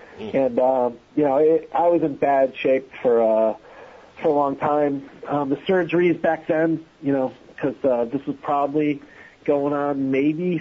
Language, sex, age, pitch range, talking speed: English, male, 40-59, 135-165 Hz, 180 wpm